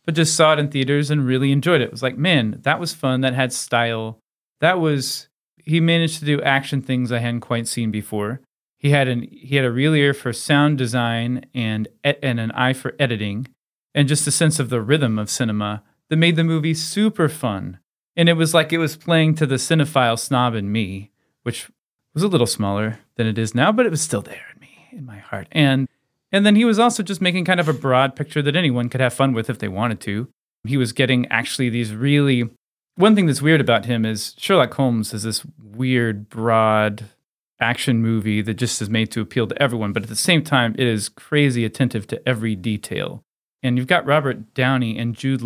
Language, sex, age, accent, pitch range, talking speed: English, male, 30-49, American, 115-150 Hz, 220 wpm